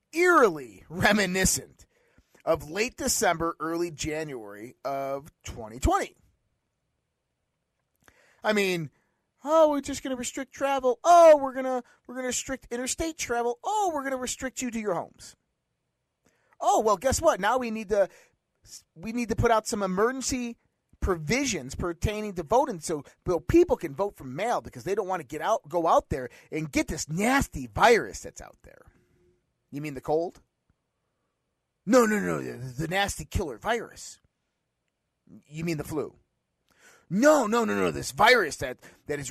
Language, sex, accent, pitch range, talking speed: English, male, American, 155-250 Hz, 165 wpm